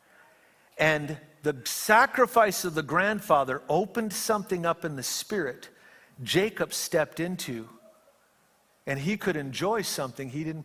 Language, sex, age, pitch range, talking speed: English, male, 50-69, 140-195 Hz, 125 wpm